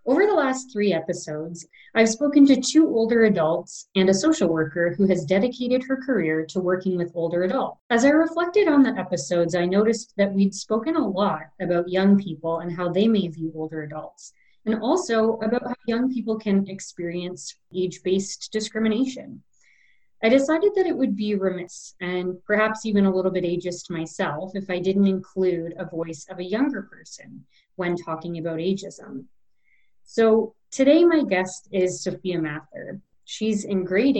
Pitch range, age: 180-225 Hz, 30-49